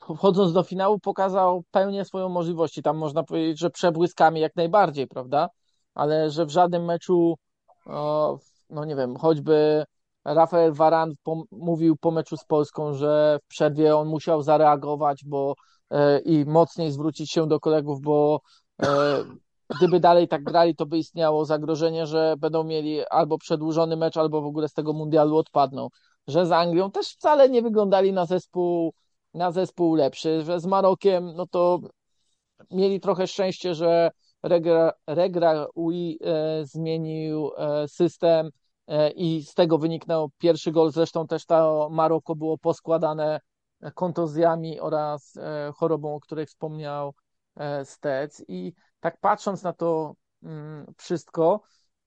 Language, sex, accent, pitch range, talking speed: Polish, male, native, 155-175 Hz, 145 wpm